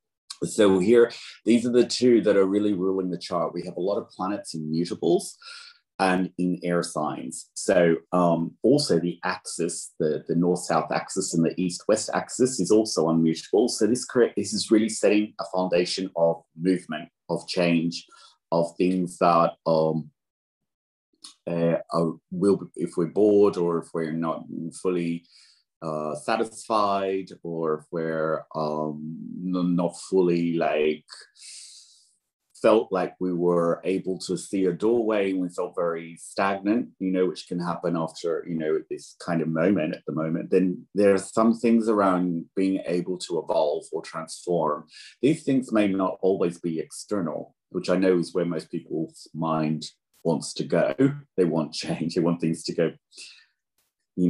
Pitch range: 85-100 Hz